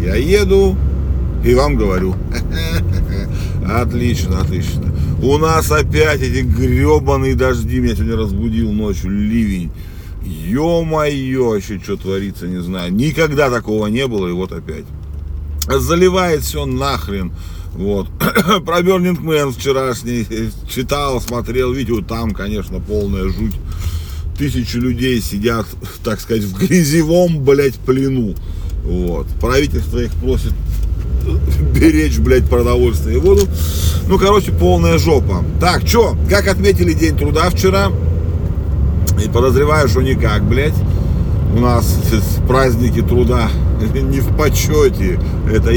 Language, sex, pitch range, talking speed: Russian, male, 80-115 Hz, 115 wpm